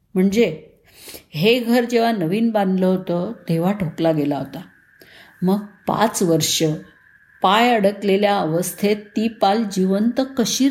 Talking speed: 125 wpm